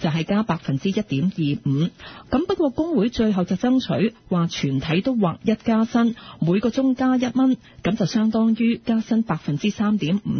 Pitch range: 170-240 Hz